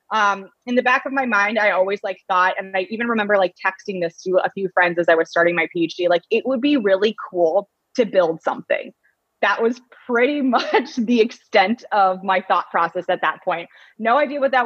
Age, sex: 20-39, female